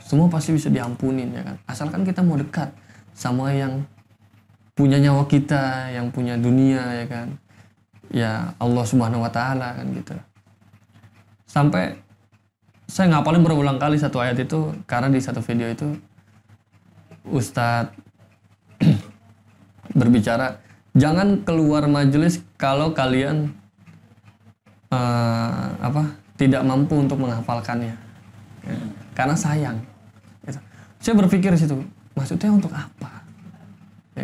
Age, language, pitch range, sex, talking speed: 20-39, Indonesian, 105-140 Hz, male, 110 wpm